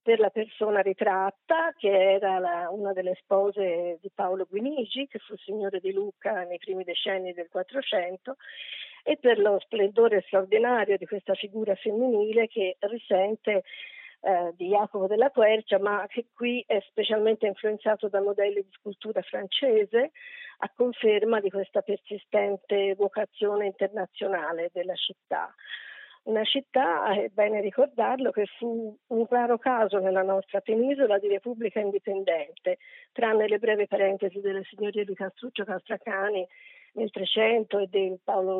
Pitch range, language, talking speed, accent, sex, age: 195-230 Hz, Italian, 135 wpm, native, female, 50-69